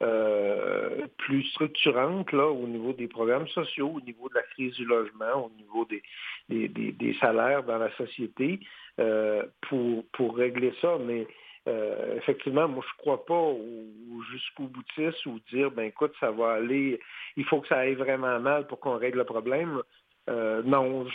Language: French